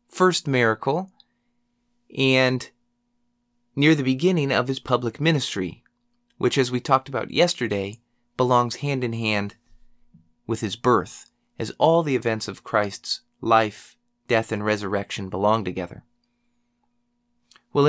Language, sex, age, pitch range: English, male, 30-49, 115-175 Hz